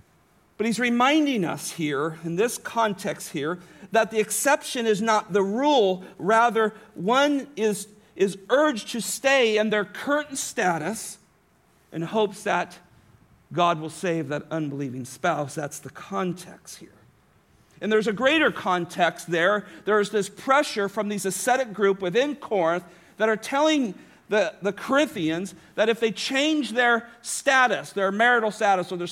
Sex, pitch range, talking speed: male, 165-225 Hz, 150 wpm